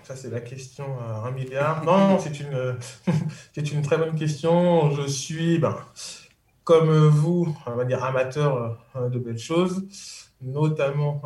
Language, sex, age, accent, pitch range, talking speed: French, male, 20-39, French, 125-160 Hz, 160 wpm